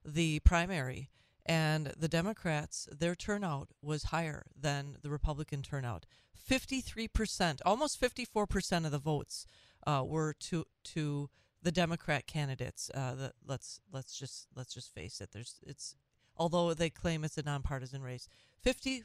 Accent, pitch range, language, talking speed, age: American, 145-190 Hz, English, 150 wpm, 40-59